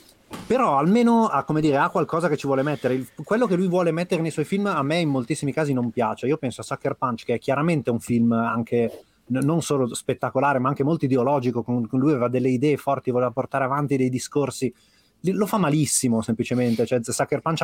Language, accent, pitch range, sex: Italian, native, 115-150 Hz, male